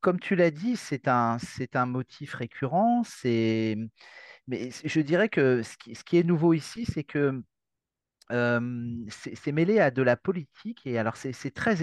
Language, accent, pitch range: French, French, 110-150 Hz